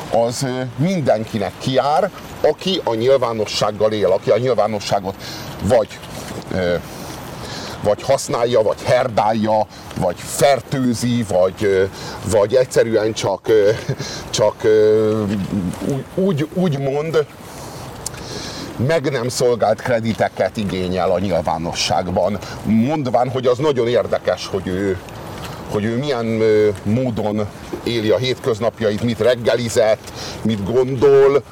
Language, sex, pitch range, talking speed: Hungarian, male, 105-140 Hz, 95 wpm